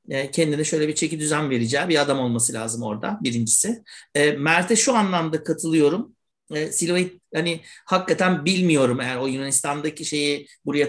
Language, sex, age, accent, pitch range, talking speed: Turkish, male, 60-79, native, 145-175 Hz, 140 wpm